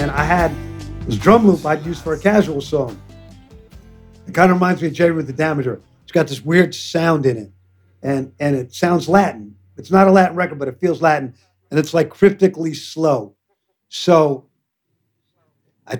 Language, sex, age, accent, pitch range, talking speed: English, male, 50-69, American, 125-155 Hz, 190 wpm